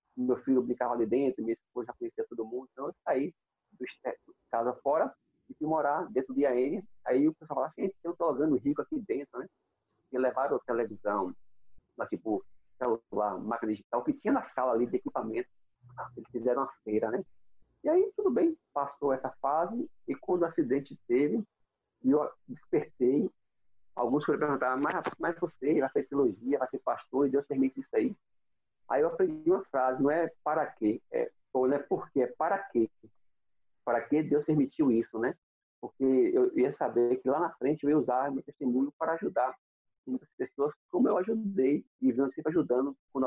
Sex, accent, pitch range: male, Brazilian, 125-195 Hz